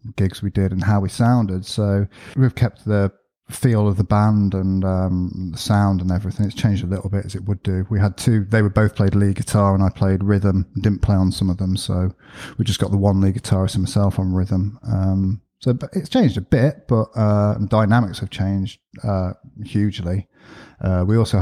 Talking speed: 220 wpm